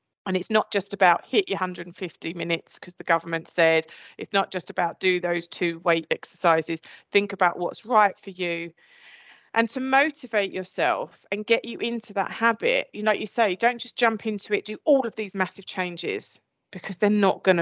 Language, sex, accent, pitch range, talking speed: English, female, British, 175-215 Hz, 195 wpm